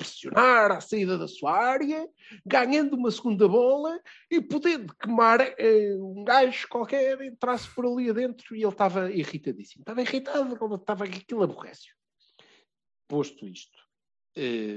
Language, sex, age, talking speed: Portuguese, male, 50-69, 125 wpm